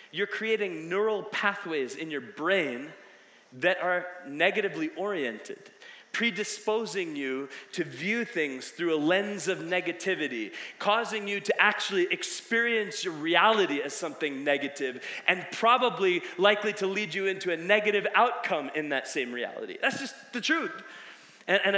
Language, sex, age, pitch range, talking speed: English, male, 30-49, 185-235 Hz, 140 wpm